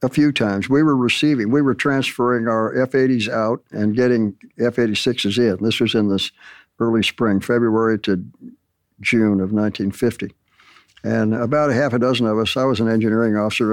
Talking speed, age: 175 wpm, 60-79